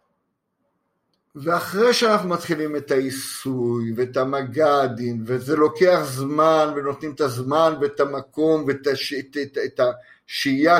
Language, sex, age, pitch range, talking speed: Hebrew, male, 50-69, 140-195 Hz, 100 wpm